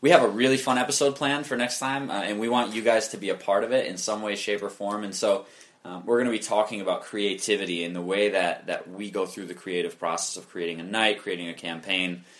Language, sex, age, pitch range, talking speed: English, male, 20-39, 95-115 Hz, 270 wpm